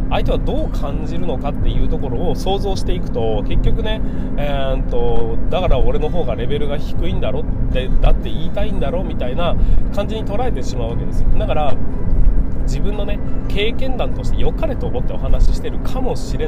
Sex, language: male, Japanese